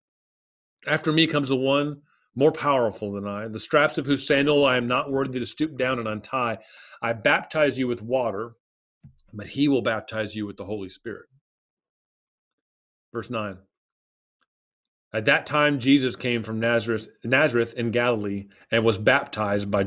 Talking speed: 160 wpm